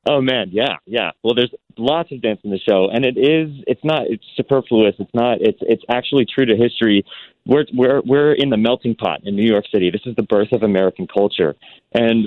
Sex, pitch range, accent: male, 100-115 Hz, American